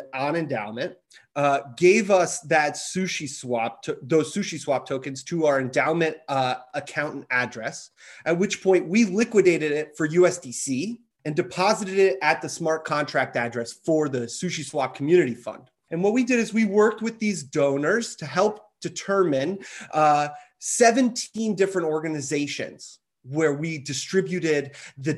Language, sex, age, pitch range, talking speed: English, male, 30-49, 140-195 Hz, 145 wpm